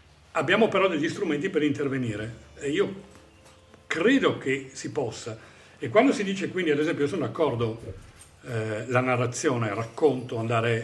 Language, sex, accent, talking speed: Italian, male, native, 150 wpm